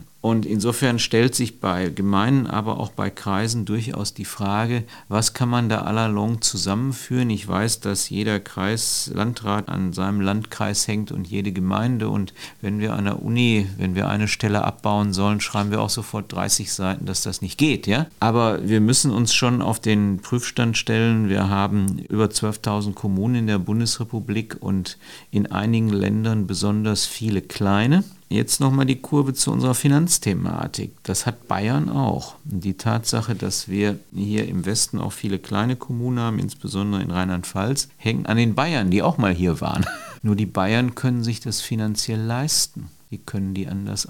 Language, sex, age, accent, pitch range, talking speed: German, male, 50-69, German, 100-120 Hz, 170 wpm